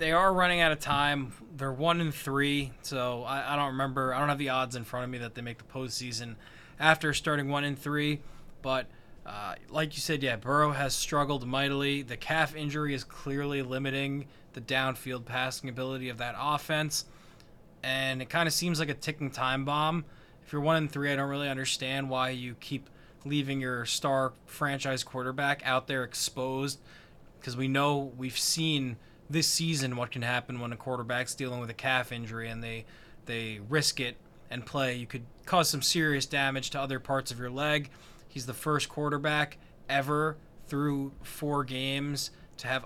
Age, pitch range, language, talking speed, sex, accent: 20-39, 130-150 Hz, English, 180 wpm, male, American